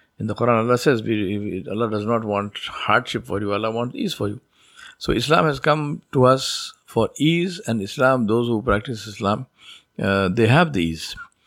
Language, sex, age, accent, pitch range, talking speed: English, male, 50-69, Indian, 100-125 Hz, 180 wpm